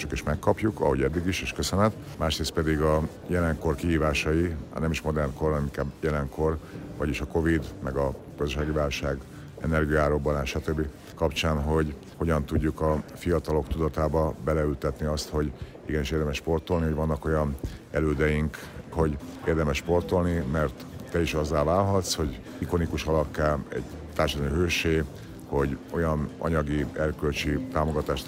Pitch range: 75-90 Hz